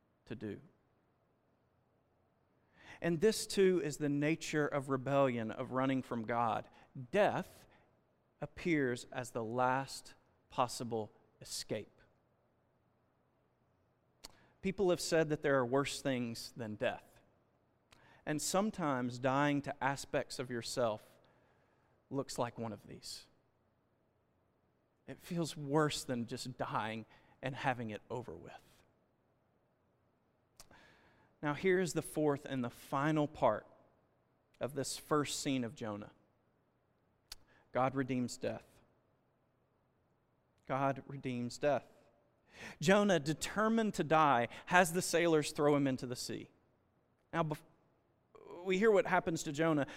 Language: English